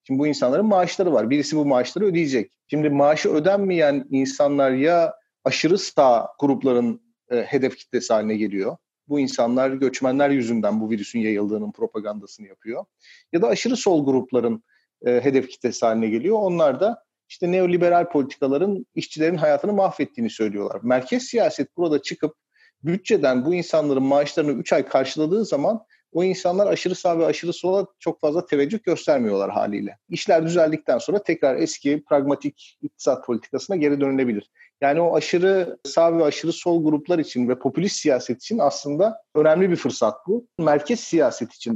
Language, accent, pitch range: Turkish, native, 130-185 Hz